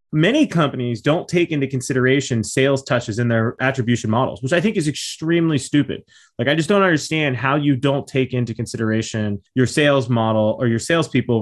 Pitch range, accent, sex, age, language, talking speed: 115-150 Hz, American, male, 30-49, English, 185 wpm